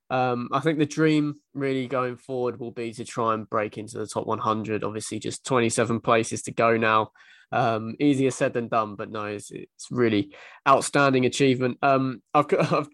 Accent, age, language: British, 20-39, English